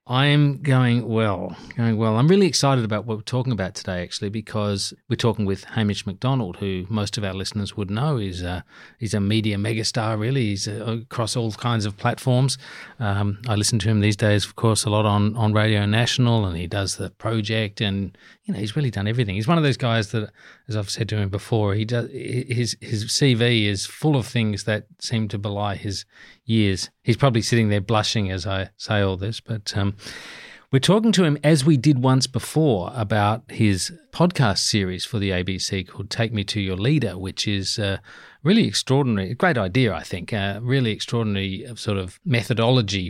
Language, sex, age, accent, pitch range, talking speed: English, male, 40-59, Australian, 100-125 Hz, 205 wpm